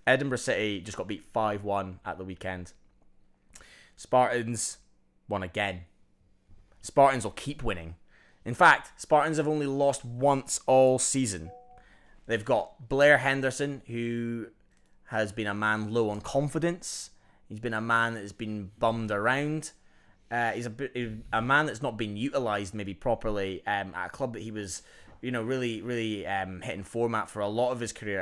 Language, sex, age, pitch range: English, male, 20-39, 95-120 Hz